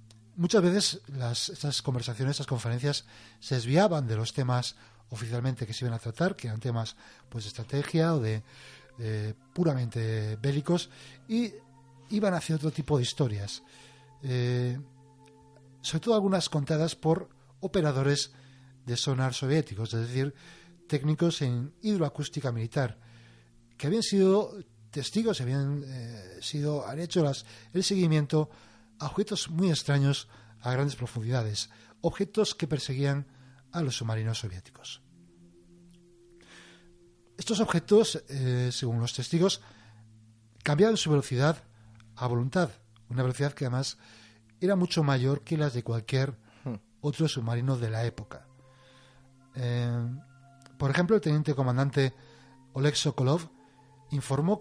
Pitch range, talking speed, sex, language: 120-155 Hz, 125 wpm, male, Spanish